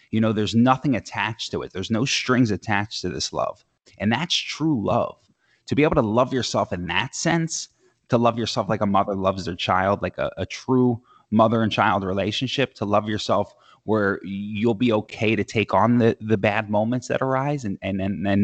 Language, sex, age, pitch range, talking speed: Urdu, male, 20-39, 95-120 Hz, 210 wpm